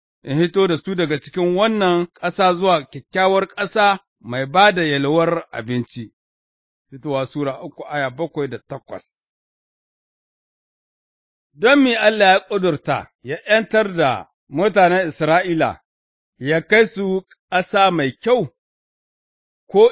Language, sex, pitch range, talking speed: English, male, 145-195 Hz, 110 wpm